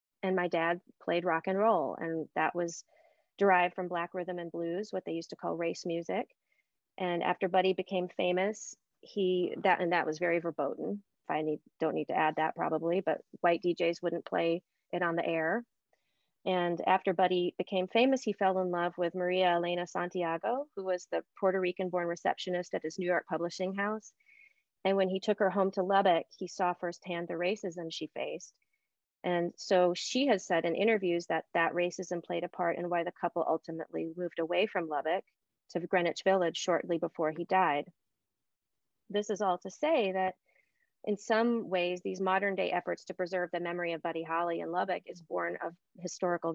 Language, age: English, 30-49